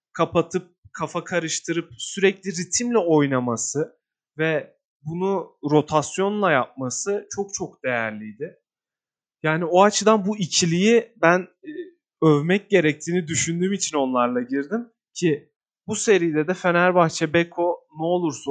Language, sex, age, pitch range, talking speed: Turkish, male, 30-49, 150-195 Hz, 105 wpm